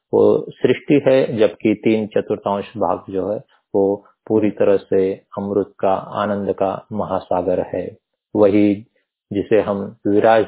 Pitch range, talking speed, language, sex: 95-115 Hz, 130 wpm, Hindi, male